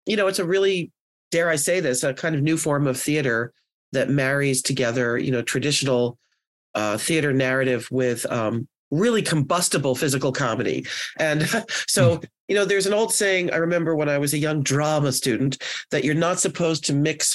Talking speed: 185 wpm